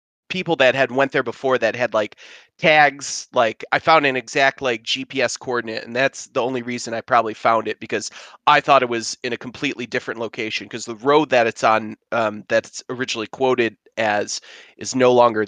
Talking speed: 200 wpm